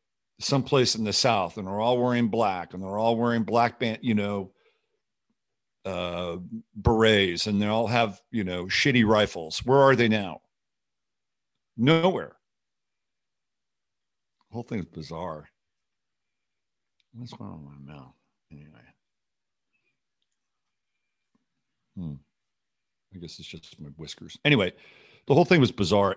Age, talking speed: 60-79, 125 wpm